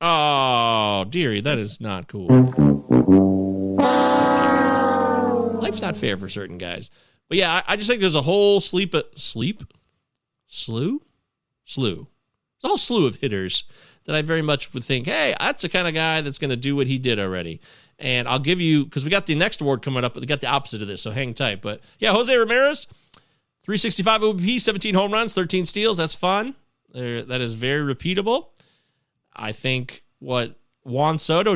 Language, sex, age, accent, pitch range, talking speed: English, male, 30-49, American, 115-185 Hz, 185 wpm